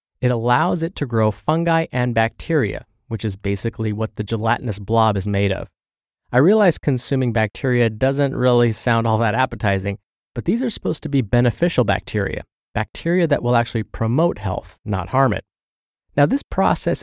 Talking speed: 170 wpm